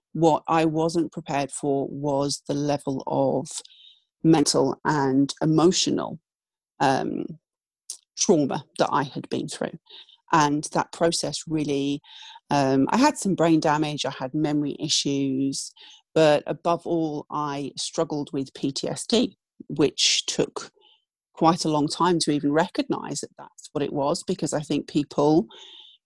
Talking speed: 135 wpm